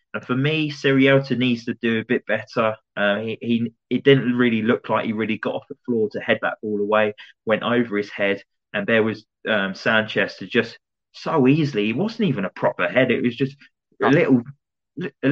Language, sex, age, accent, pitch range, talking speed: English, male, 20-39, British, 110-140 Hz, 205 wpm